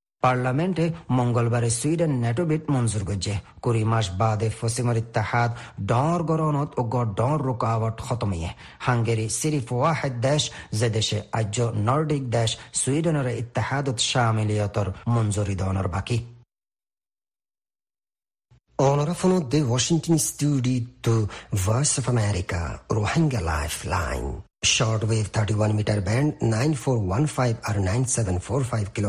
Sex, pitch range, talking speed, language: male, 110-135 Hz, 30 wpm, Bengali